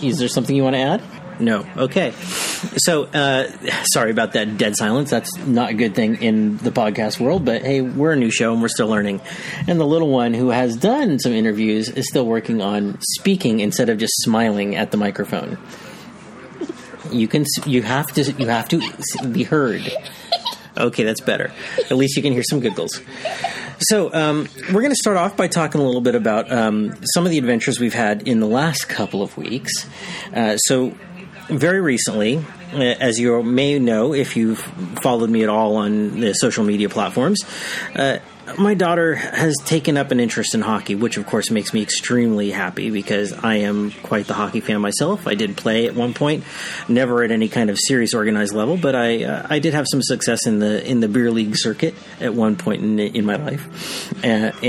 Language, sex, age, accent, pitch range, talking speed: English, male, 40-59, American, 115-160 Hz, 200 wpm